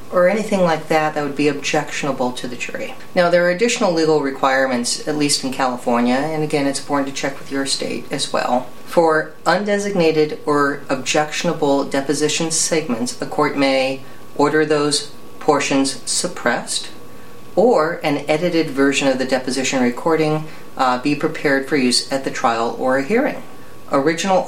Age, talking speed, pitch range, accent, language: 40-59, 160 wpm, 135-160 Hz, American, English